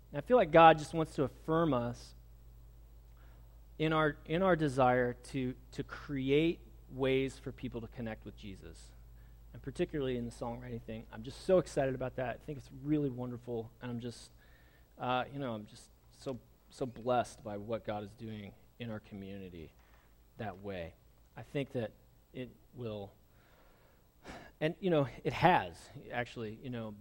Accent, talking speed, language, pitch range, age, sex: American, 165 wpm, English, 110-140 Hz, 30-49, male